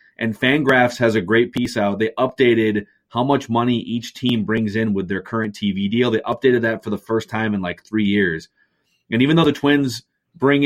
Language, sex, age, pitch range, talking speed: English, male, 30-49, 105-125 Hz, 215 wpm